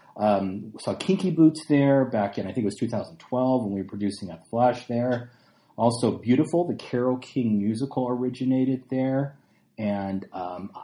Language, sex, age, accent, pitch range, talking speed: English, male, 30-49, American, 100-130 Hz, 160 wpm